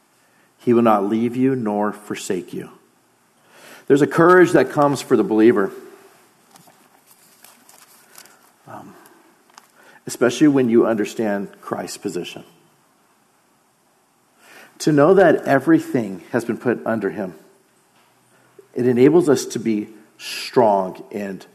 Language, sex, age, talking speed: English, male, 50-69, 110 wpm